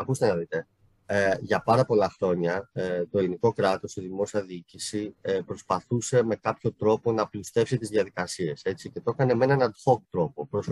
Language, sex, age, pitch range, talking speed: Greek, male, 30-49, 105-140 Hz, 150 wpm